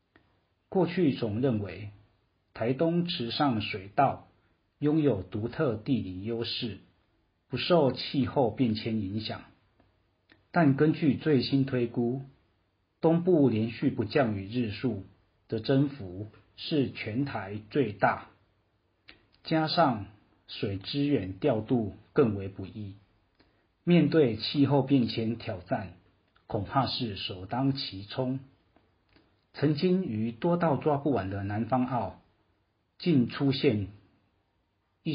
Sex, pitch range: male, 100-135 Hz